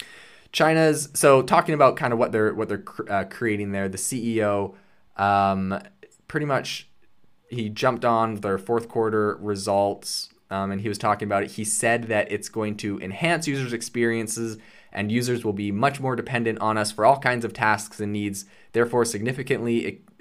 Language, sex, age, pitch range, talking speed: English, male, 20-39, 100-120 Hz, 180 wpm